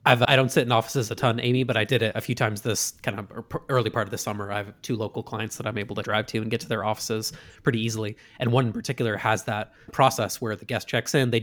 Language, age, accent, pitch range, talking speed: English, 20-39, American, 110-125 Hz, 285 wpm